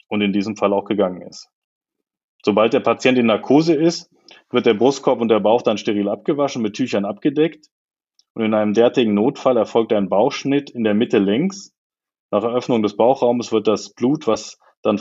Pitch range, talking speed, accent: 105-130 Hz, 185 wpm, German